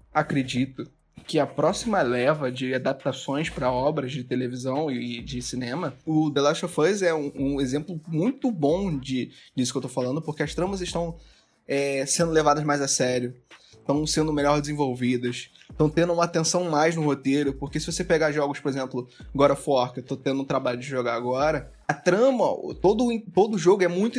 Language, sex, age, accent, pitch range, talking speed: Portuguese, male, 20-39, Brazilian, 135-180 Hz, 195 wpm